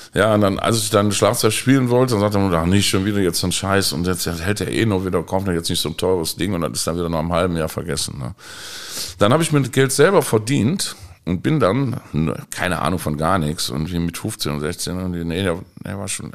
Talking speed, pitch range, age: 260 wpm, 85-115 Hz, 50-69